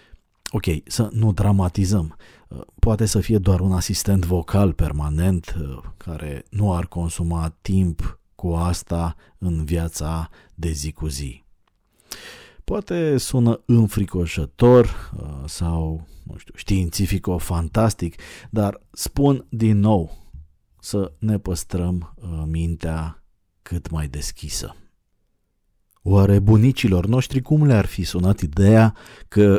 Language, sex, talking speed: Romanian, male, 105 wpm